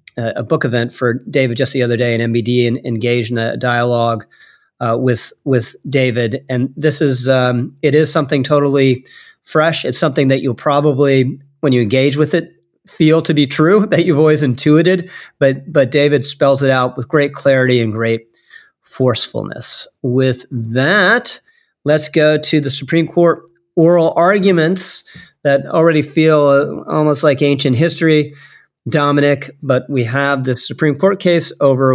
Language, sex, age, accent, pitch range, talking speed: English, male, 40-59, American, 125-150 Hz, 160 wpm